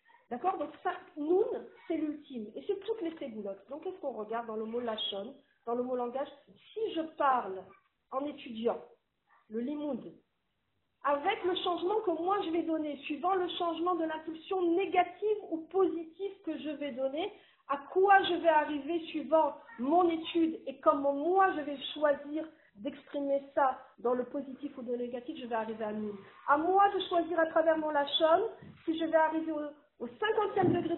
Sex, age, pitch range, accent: female, 50-69, 265-355 Hz, French